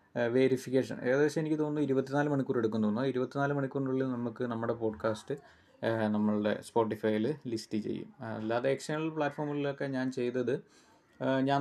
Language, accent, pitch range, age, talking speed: Malayalam, native, 115-135 Hz, 20-39, 120 wpm